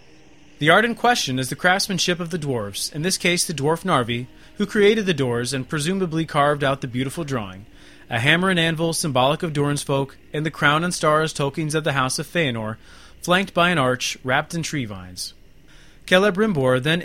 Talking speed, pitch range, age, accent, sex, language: 195 wpm, 125-170 Hz, 30-49, American, male, English